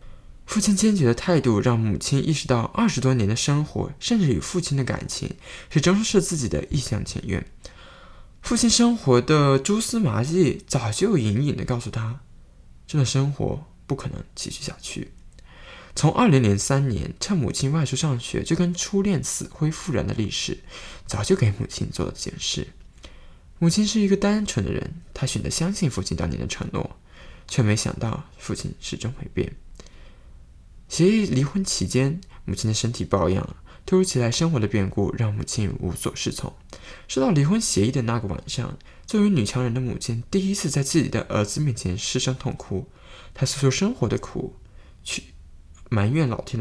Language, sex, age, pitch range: Chinese, male, 20-39, 100-160 Hz